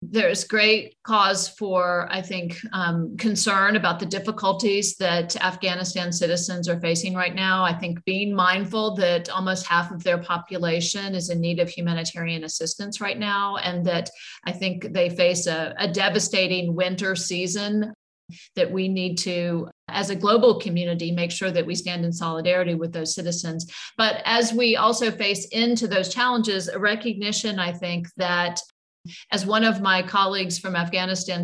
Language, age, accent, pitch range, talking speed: English, 50-69, American, 175-200 Hz, 160 wpm